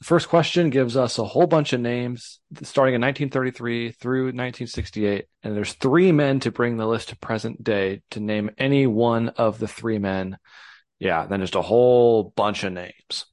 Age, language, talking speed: 30-49, English, 185 wpm